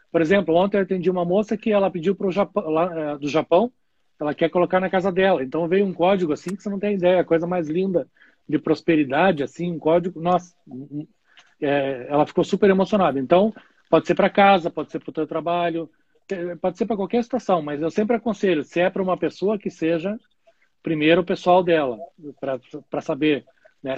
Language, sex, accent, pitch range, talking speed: Portuguese, male, Brazilian, 160-195 Hz, 205 wpm